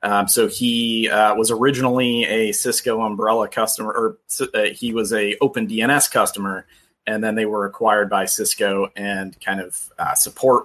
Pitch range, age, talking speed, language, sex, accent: 100-110 Hz, 30-49, 165 wpm, English, male, American